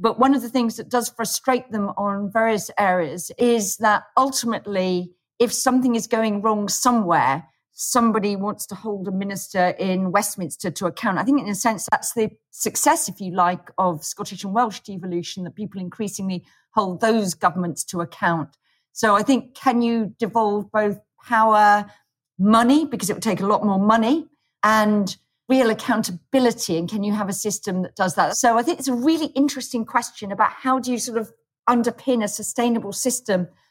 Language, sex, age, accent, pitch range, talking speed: English, female, 40-59, British, 185-235 Hz, 180 wpm